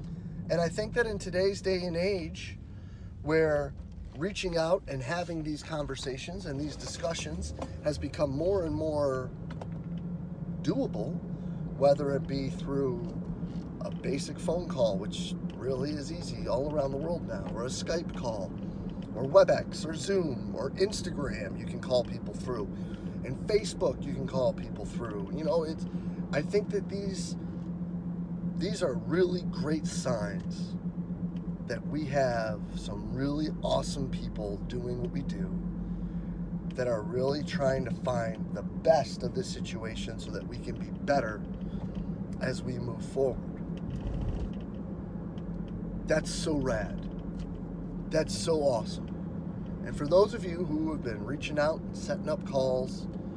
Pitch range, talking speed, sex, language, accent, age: 155-180 Hz, 145 wpm, male, English, American, 30-49